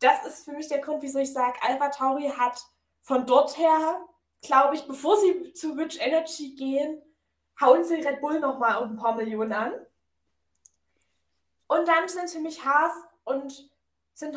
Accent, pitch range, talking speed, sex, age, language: German, 250-310 Hz, 170 wpm, female, 10-29, German